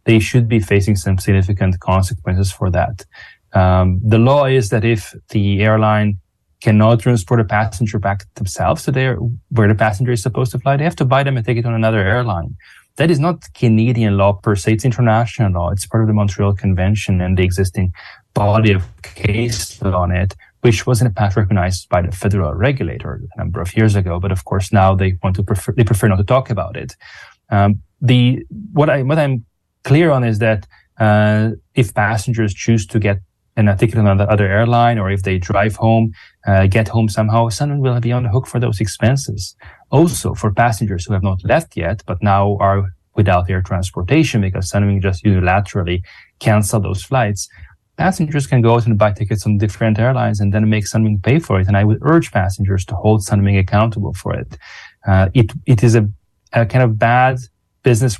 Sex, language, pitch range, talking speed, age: male, English, 100-120 Hz, 200 wpm, 20-39